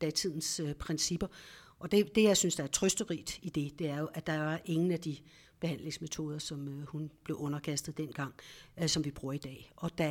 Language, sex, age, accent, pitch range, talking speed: Danish, female, 60-79, native, 150-180 Hz, 220 wpm